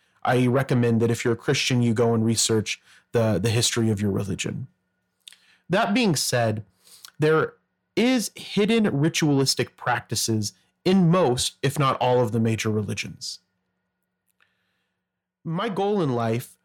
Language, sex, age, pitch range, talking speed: English, male, 30-49, 115-145 Hz, 135 wpm